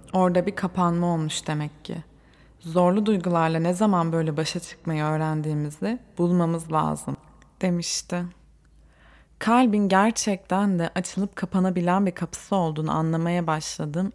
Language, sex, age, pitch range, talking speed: Turkish, female, 20-39, 155-195 Hz, 115 wpm